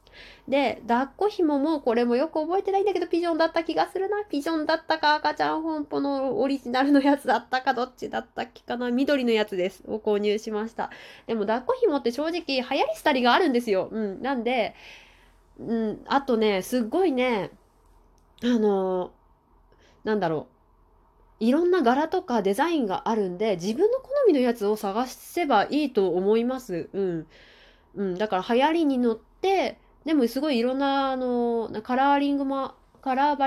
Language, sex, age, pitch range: Japanese, female, 20-39, 205-285 Hz